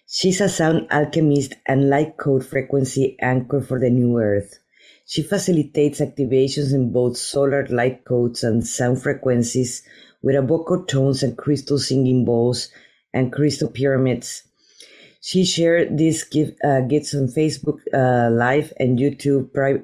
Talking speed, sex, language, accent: 140 wpm, female, English, Mexican